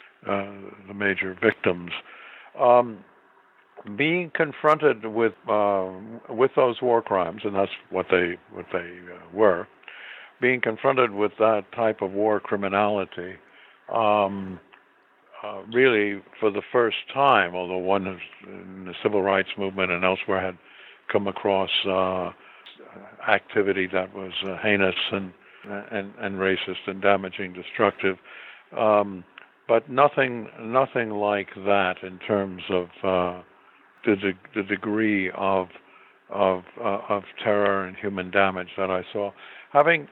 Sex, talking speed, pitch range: male, 130 wpm, 95-115 Hz